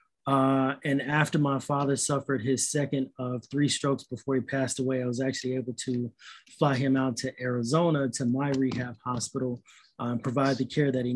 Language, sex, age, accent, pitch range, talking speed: English, male, 30-49, American, 130-145 Hz, 190 wpm